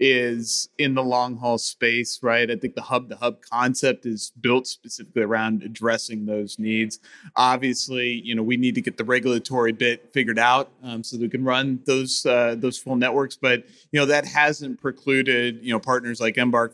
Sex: male